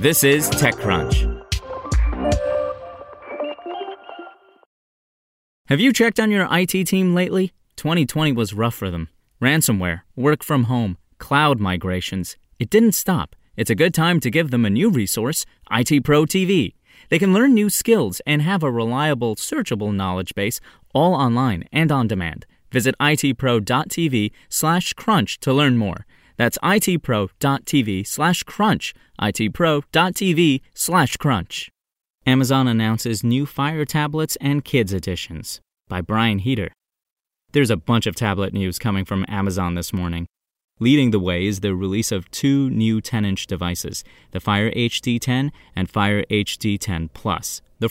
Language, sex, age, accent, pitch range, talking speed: English, male, 20-39, American, 100-145 Hz, 135 wpm